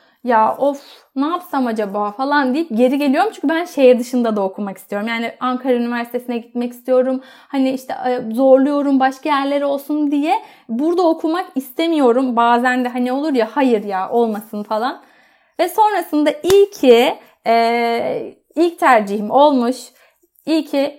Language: Turkish